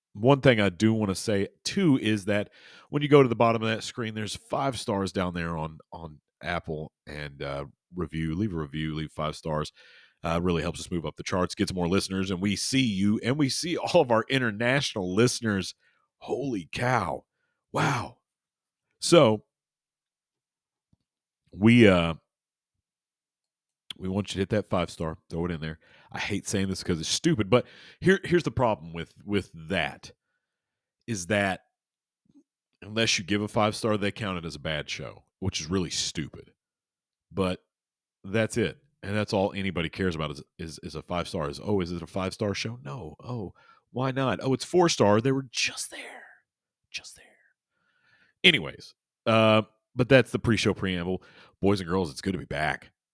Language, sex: English, male